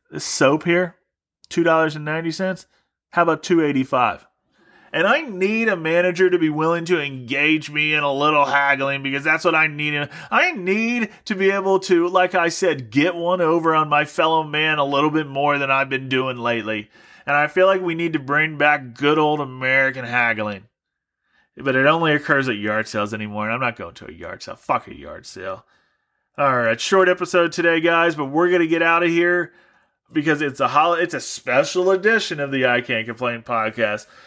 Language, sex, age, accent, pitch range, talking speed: English, male, 30-49, American, 140-180 Hz, 200 wpm